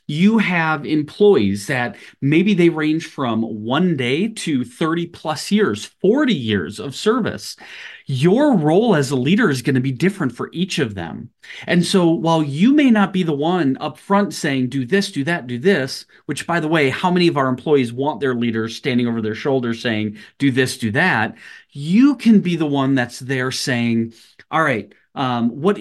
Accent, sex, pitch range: American, male, 130-185 Hz